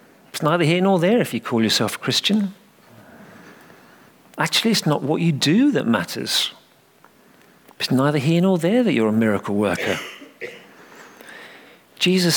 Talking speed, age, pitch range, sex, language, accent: 145 wpm, 50-69, 110-150 Hz, male, English, British